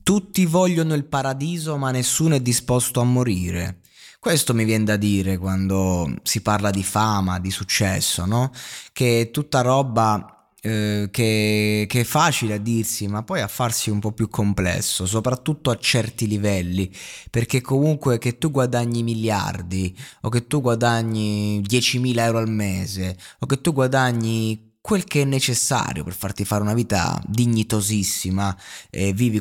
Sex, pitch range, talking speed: male, 105-130 Hz, 155 wpm